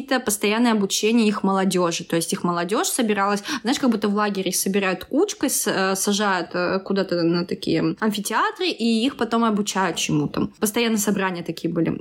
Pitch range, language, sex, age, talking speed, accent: 195-265 Hz, Russian, female, 20-39, 150 wpm, native